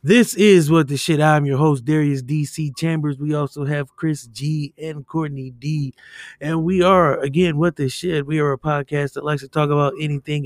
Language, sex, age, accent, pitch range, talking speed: English, male, 20-39, American, 135-175 Hz, 205 wpm